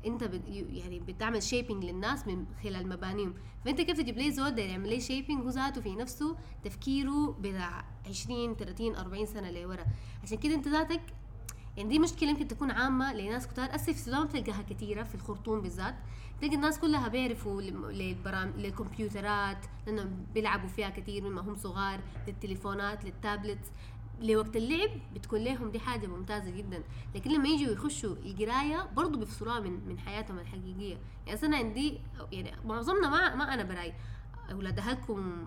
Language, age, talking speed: Arabic, 20-39, 150 wpm